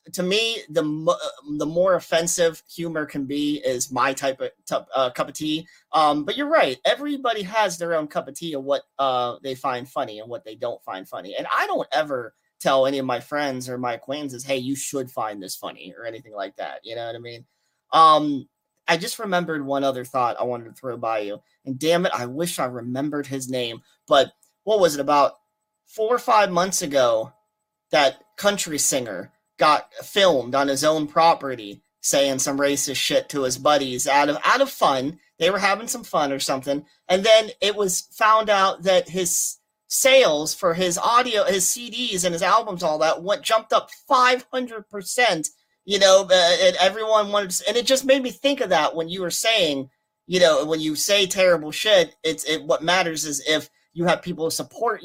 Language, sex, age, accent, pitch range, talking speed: English, male, 30-49, American, 140-215 Hz, 205 wpm